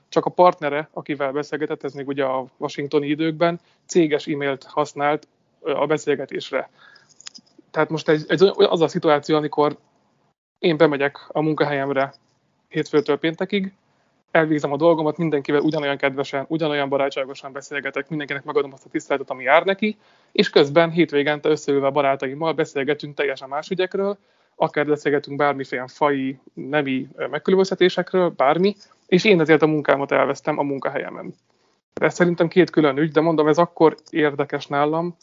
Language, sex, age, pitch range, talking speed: Hungarian, male, 20-39, 140-160 Hz, 140 wpm